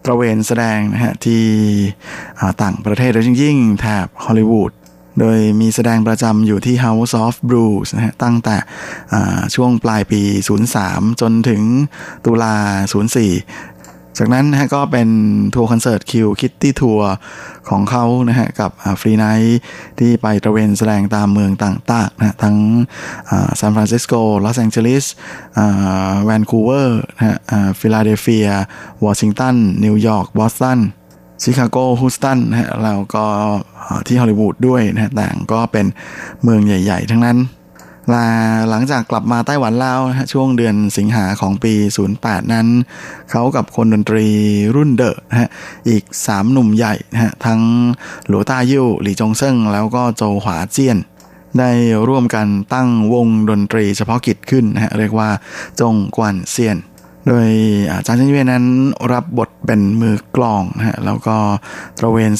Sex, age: male, 20-39